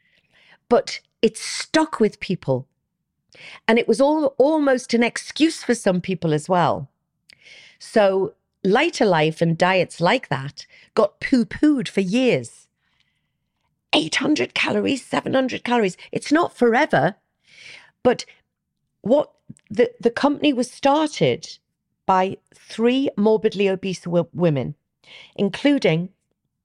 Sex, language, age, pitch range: female, English, 40-59, 160-225 Hz